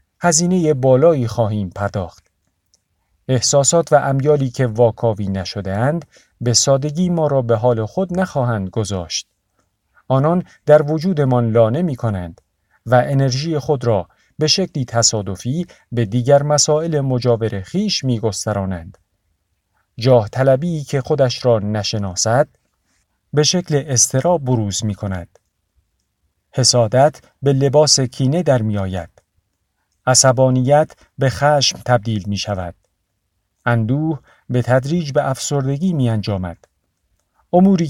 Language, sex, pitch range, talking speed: Persian, male, 100-140 Hz, 105 wpm